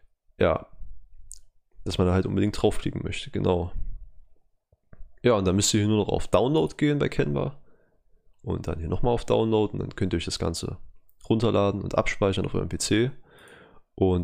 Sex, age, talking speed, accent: male, 20-39, 175 wpm, German